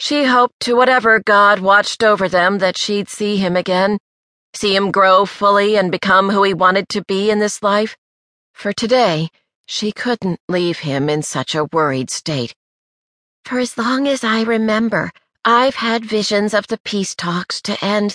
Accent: American